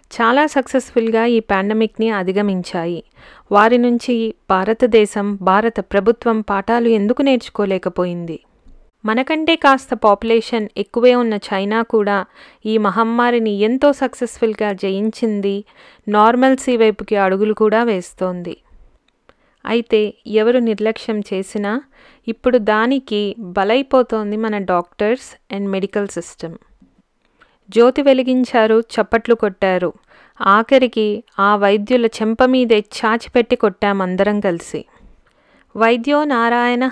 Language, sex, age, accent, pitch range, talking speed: Telugu, female, 30-49, native, 205-240 Hz, 90 wpm